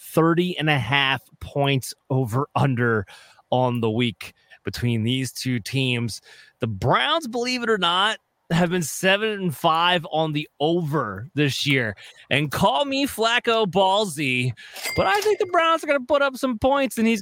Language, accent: English, American